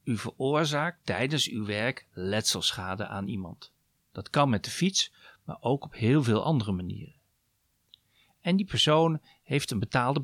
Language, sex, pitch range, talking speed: Dutch, male, 100-150 Hz, 150 wpm